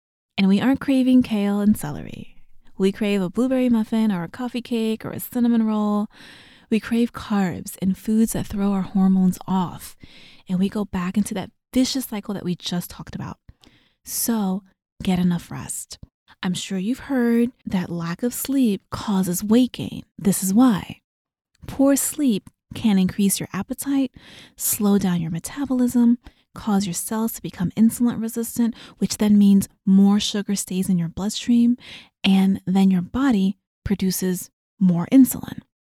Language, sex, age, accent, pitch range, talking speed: English, female, 20-39, American, 190-240 Hz, 155 wpm